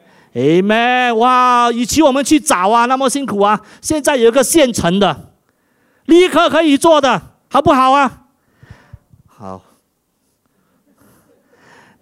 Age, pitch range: 50-69, 165-275 Hz